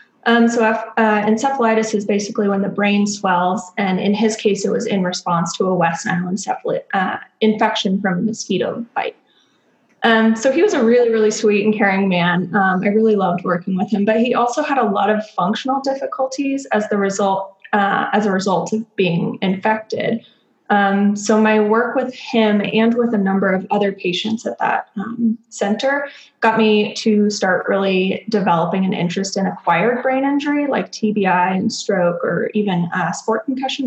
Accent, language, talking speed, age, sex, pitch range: American, English, 185 wpm, 20-39, female, 195-225 Hz